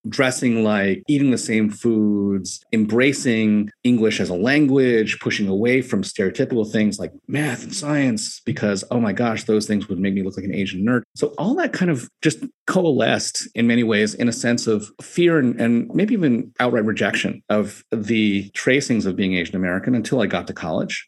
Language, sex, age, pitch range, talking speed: English, male, 40-59, 100-120 Hz, 190 wpm